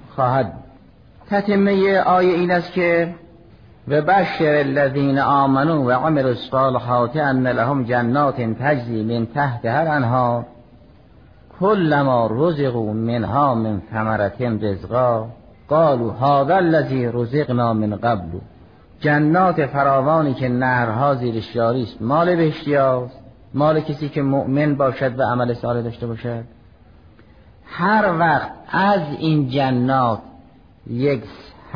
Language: Persian